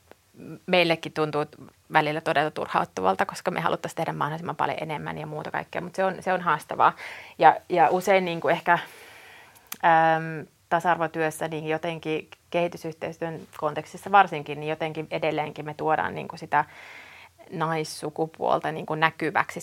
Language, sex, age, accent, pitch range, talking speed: Finnish, female, 30-49, native, 150-165 Hz, 140 wpm